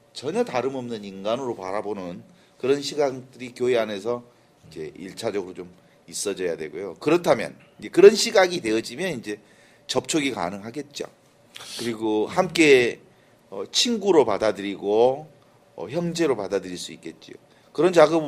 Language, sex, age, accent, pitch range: Korean, male, 40-59, native, 115-165 Hz